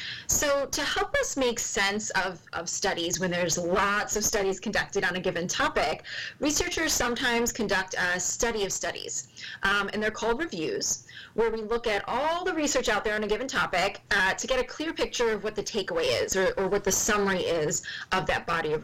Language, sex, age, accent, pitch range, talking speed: English, female, 20-39, American, 195-250 Hz, 205 wpm